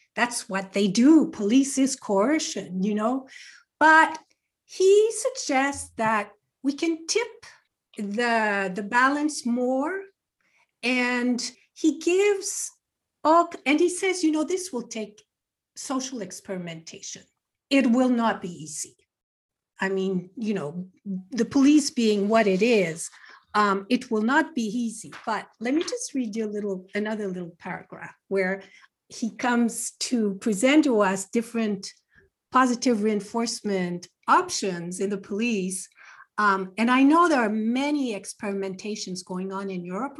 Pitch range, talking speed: 200-280 Hz, 135 wpm